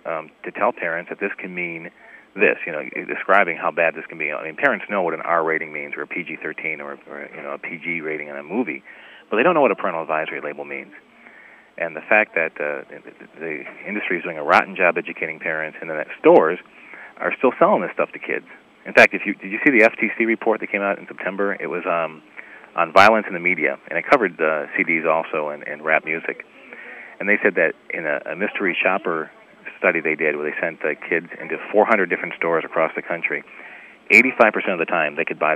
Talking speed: 235 wpm